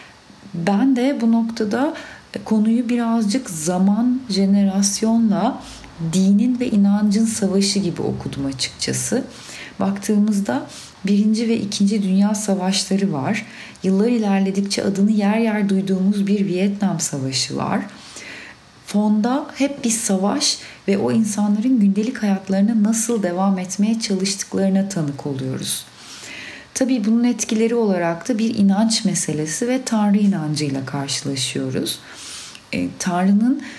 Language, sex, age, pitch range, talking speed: Turkish, female, 40-59, 185-225 Hz, 110 wpm